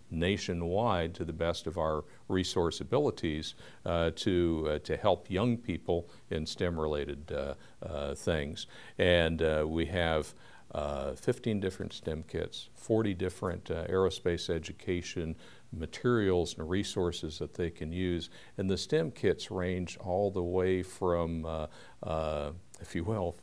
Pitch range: 80-95 Hz